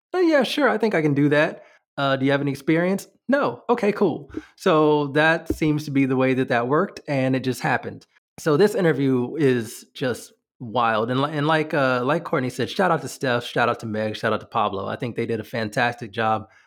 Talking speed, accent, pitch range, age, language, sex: 225 wpm, American, 120-150 Hz, 20-39, English, male